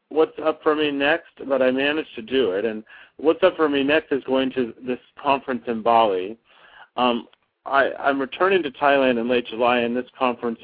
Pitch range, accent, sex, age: 115-140 Hz, American, male, 50-69